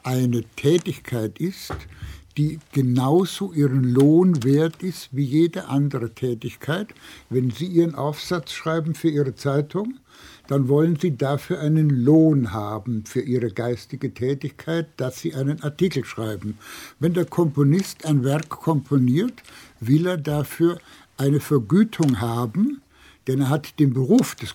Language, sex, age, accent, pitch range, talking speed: German, male, 60-79, German, 140-180 Hz, 135 wpm